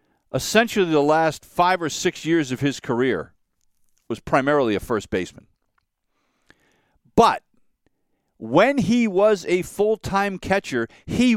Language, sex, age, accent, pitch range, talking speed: English, male, 50-69, American, 155-220 Hz, 120 wpm